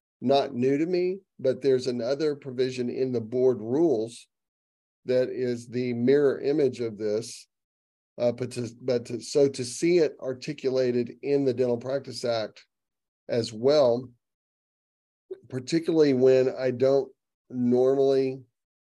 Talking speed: 125 wpm